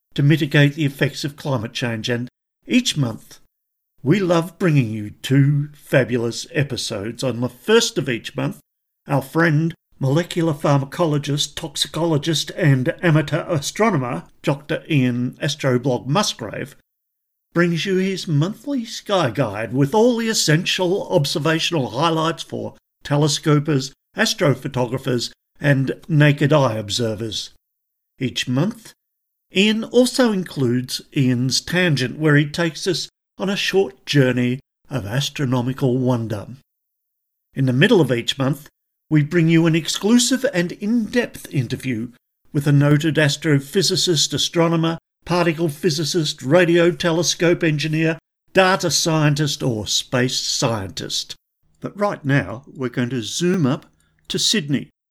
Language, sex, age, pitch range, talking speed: English, male, 50-69, 130-175 Hz, 120 wpm